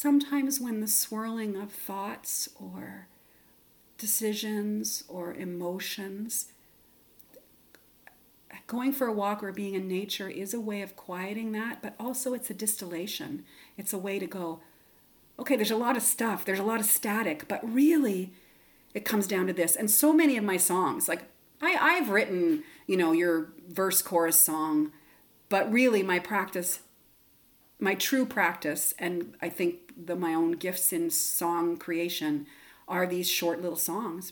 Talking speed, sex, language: 155 wpm, female, English